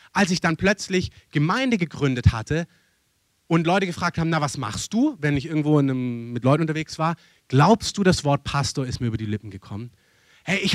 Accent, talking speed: German, 205 wpm